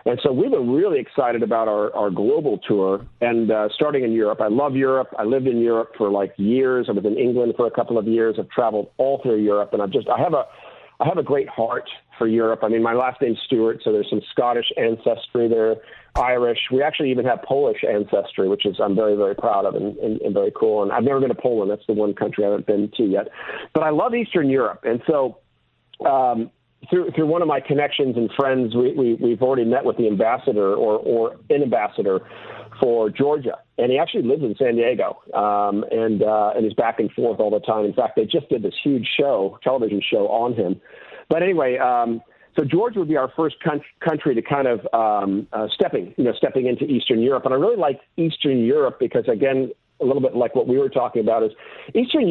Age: 40-59